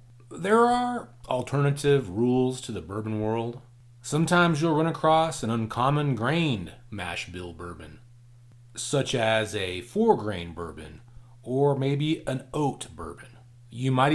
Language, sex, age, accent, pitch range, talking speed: English, male, 30-49, American, 110-140 Hz, 125 wpm